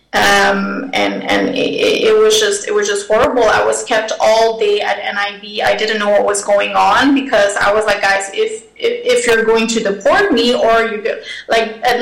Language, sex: English, female